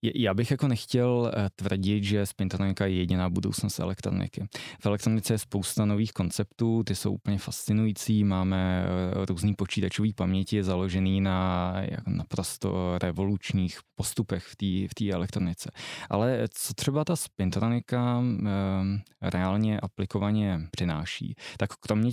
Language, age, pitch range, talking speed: Czech, 20-39, 95-110 Hz, 120 wpm